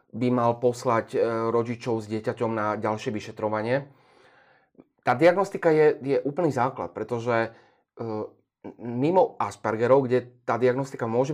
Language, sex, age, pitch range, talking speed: Slovak, male, 30-49, 110-130 Hz, 120 wpm